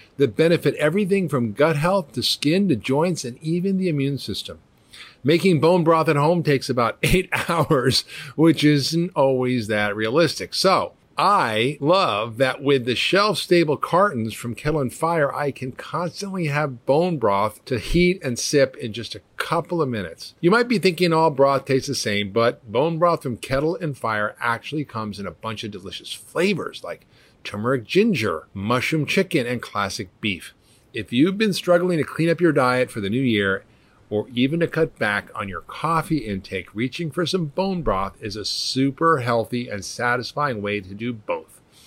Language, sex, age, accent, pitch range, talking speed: English, male, 50-69, American, 115-165 Hz, 180 wpm